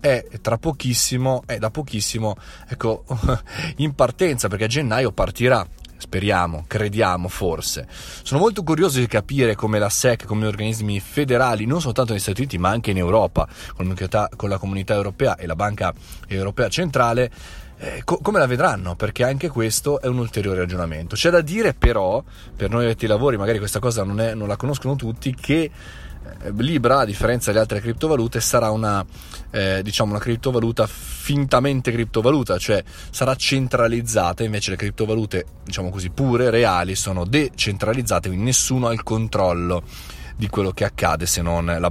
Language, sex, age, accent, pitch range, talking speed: Italian, male, 30-49, native, 95-125 Hz, 170 wpm